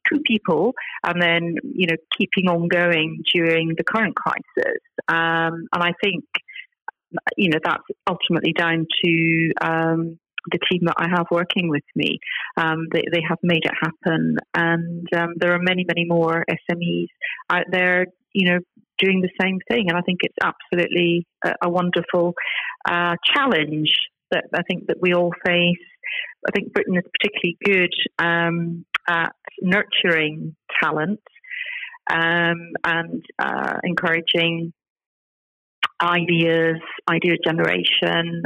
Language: English